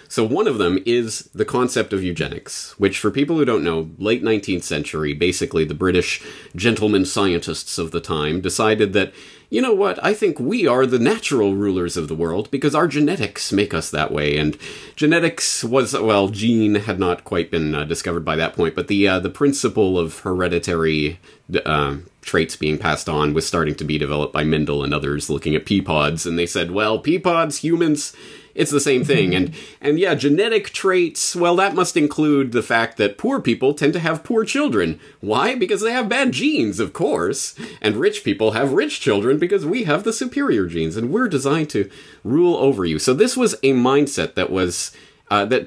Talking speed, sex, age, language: 195 wpm, male, 30-49, English